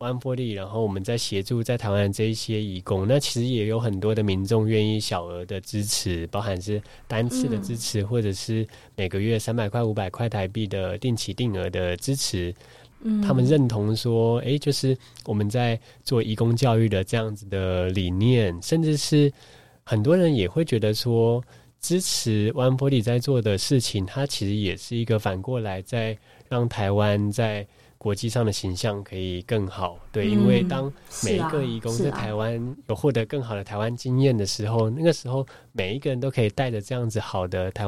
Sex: male